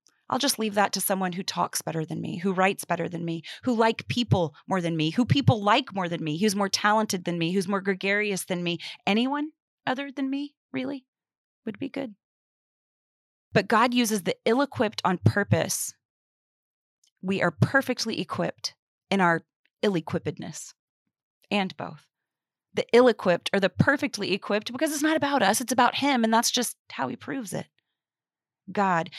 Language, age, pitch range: English, 30-49, 175-230 Hz